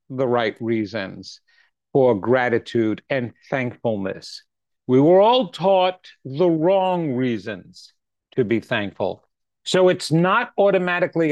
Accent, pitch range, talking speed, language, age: American, 135-185 Hz, 110 wpm, English, 50-69